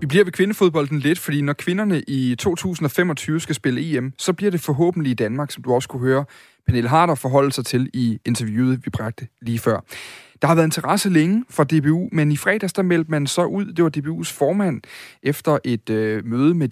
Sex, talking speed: male, 210 wpm